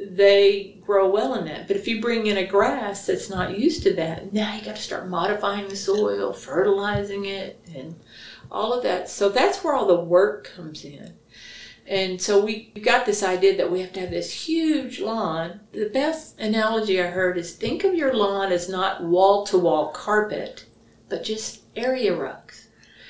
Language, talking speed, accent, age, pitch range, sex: English, 185 wpm, American, 50-69, 185-220 Hz, female